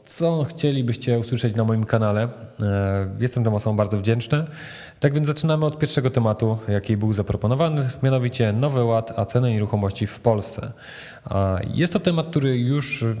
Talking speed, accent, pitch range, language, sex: 145 wpm, Polish, 105-130 Hz, English, male